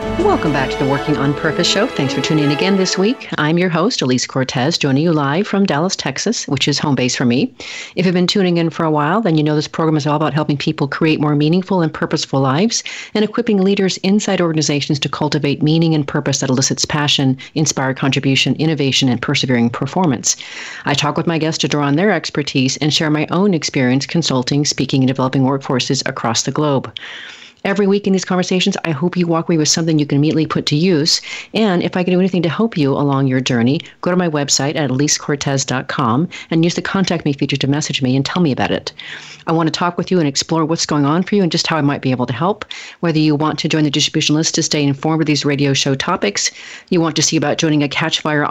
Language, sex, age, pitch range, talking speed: English, female, 40-59, 140-170 Hz, 240 wpm